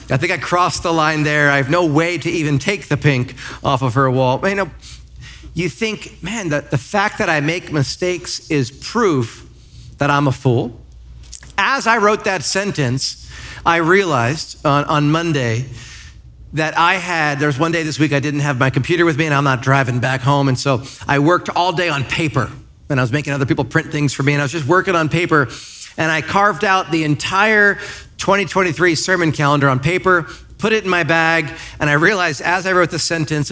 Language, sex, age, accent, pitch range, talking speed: English, male, 40-59, American, 135-175 Hz, 215 wpm